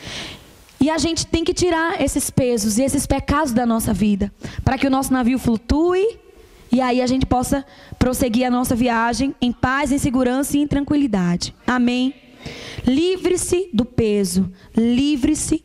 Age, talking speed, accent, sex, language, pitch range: 20-39, 155 wpm, Brazilian, female, English, 245-305 Hz